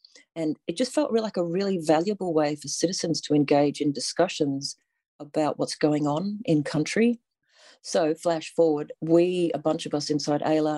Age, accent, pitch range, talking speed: 40-59, Australian, 145-160 Hz, 175 wpm